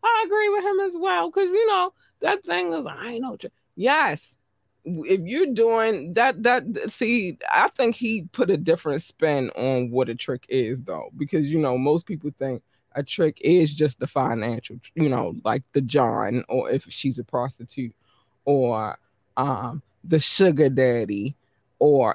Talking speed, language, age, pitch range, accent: 175 wpm, English, 20-39, 130-220 Hz, American